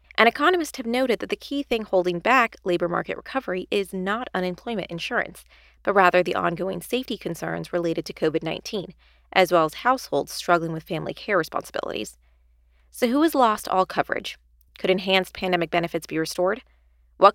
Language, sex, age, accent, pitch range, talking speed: English, female, 20-39, American, 160-220 Hz, 165 wpm